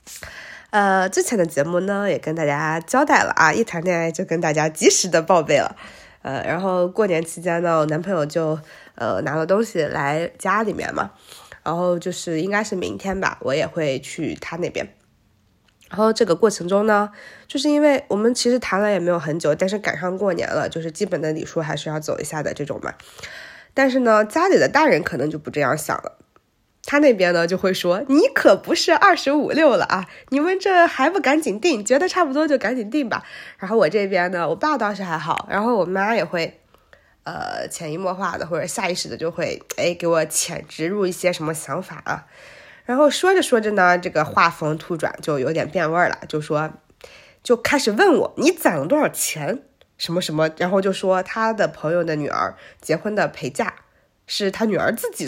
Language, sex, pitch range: Chinese, female, 165-250 Hz